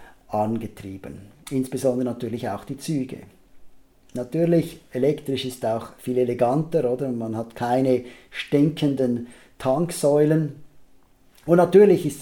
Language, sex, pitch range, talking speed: German, male, 125-145 Hz, 105 wpm